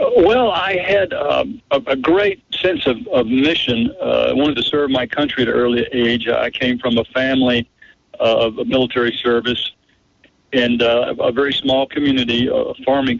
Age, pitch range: 60-79, 120-185 Hz